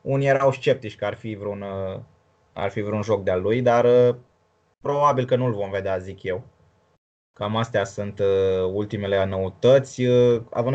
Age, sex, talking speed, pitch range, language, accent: 20-39, male, 155 wpm, 105-130 Hz, Romanian, native